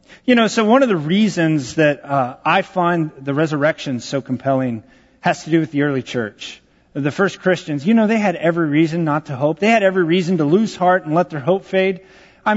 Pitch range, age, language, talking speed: 125-180 Hz, 40-59, English, 225 wpm